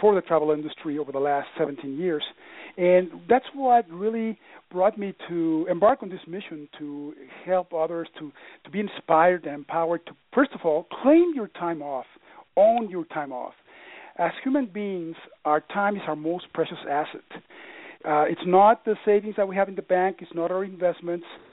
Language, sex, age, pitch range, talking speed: English, male, 50-69, 165-215 Hz, 185 wpm